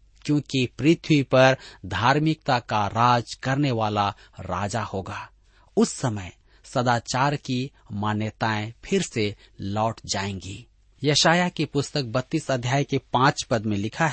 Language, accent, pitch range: Hindi, native, 105-155 Hz